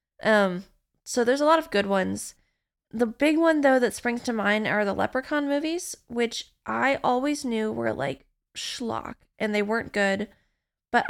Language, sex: English, female